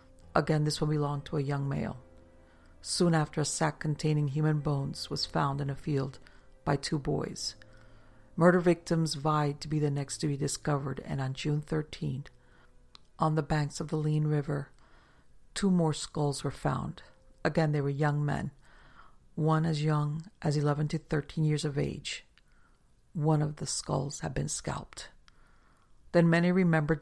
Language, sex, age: English, female, 50-69